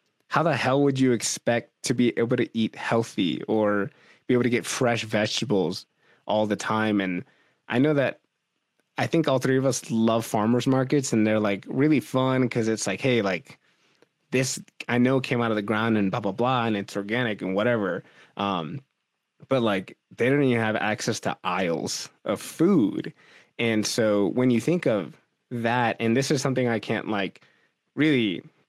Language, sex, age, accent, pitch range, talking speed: English, male, 20-39, American, 110-130 Hz, 185 wpm